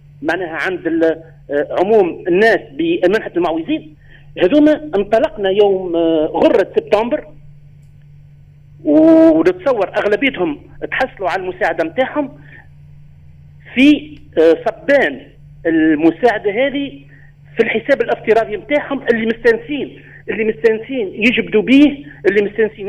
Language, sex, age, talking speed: Arabic, male, 50-69, 85 wpm